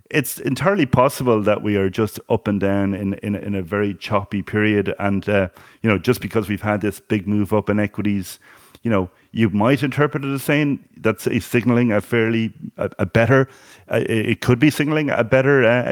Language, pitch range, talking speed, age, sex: English, 100-120 Hz, 205 wpm, 30-49, male